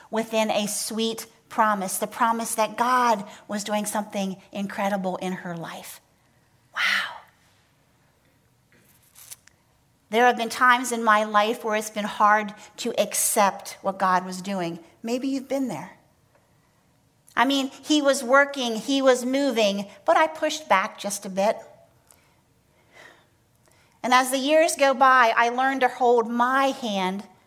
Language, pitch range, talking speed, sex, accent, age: English, 190-240 Hz, 140 wpm, female, American, 40-59